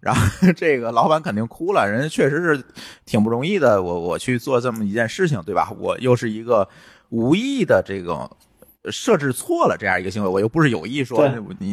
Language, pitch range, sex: Chinese, 105-145 Hz, male